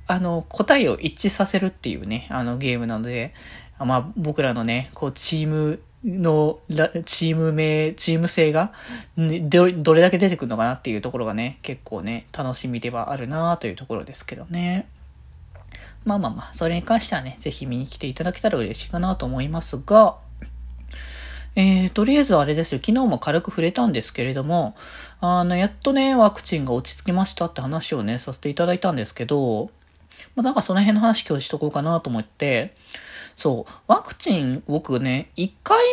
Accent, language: native, Japanese